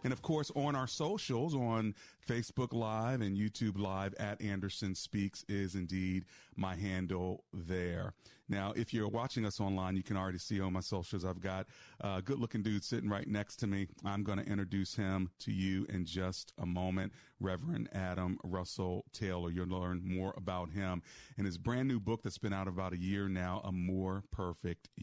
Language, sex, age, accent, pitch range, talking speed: English, male, 40-59, American, 95-120 Hz, 185 wpm